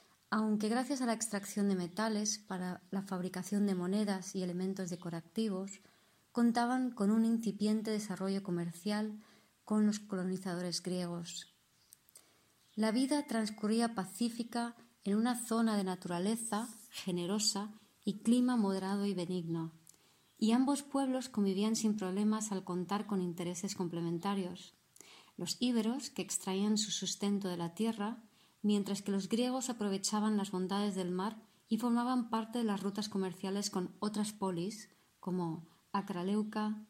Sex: female